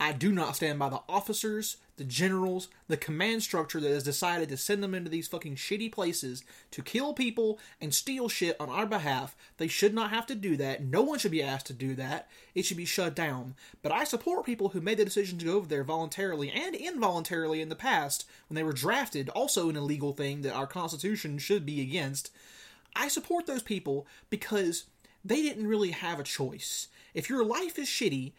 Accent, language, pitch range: American, English, 150-215 Hz